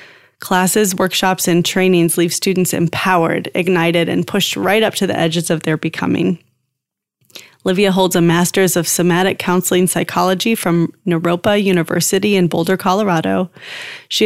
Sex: female